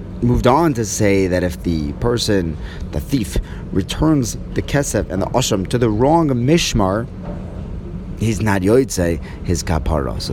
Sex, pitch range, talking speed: male, 90-120 Hz, 150 wpm